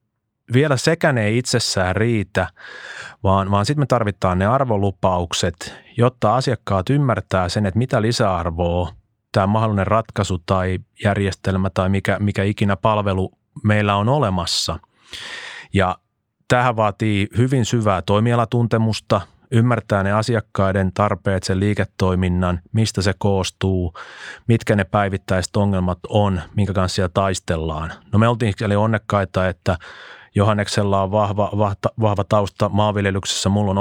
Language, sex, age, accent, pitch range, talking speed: Finnish, male, 30-49, native, 95-110 Hz, 125 wpm